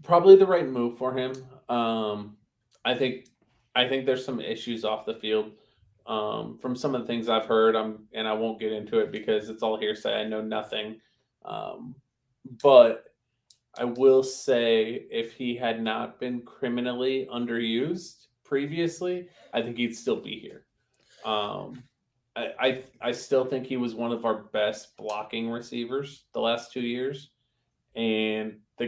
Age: 20-39